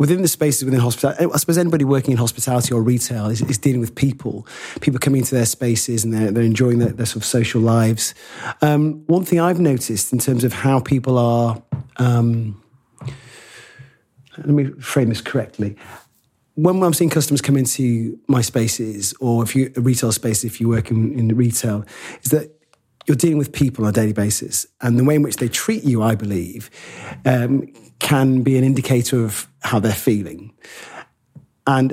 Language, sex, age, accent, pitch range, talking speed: English, male, 30-49, British, 115-140 Hz, 190 wpm